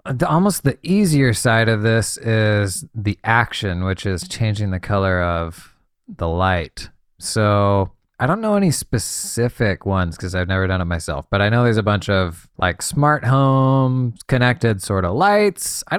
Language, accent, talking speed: English, American, 175 wpm